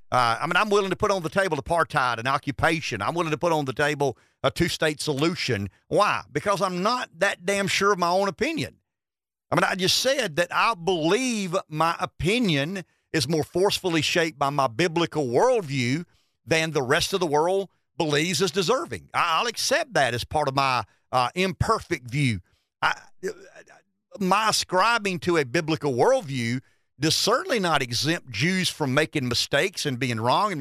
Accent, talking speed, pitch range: American, 175 wpm, 135-180 Hz